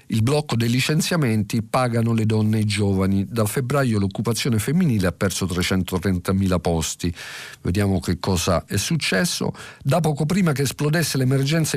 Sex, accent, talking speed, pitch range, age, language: male, native, 150 wpm, 105-155 Hz, 50-69, Italian